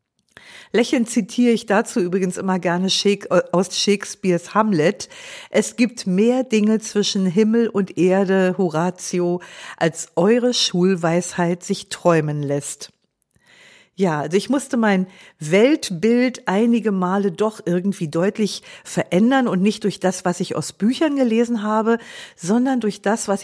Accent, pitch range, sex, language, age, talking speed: German, 180-235 Hz, female, German, 50-69, 130 wpm